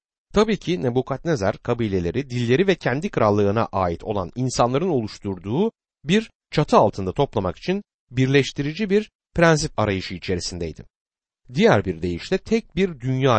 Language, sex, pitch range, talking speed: Turkish, male, 100-165 Hz, 125 wpm